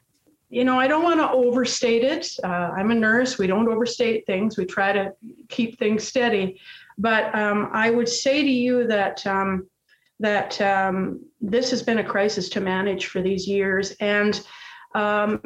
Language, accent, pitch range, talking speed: English, American, 195-245 Hz, 175 wpm